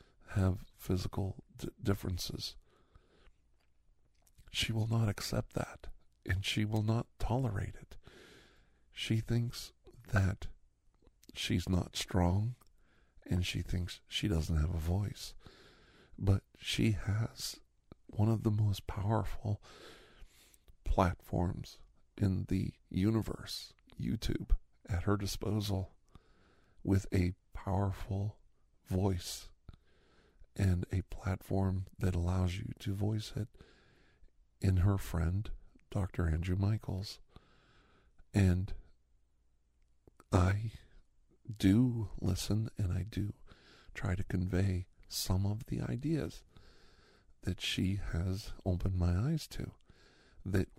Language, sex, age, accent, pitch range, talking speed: English, male, 50-69, American, 85-105 Hz, 100 wpm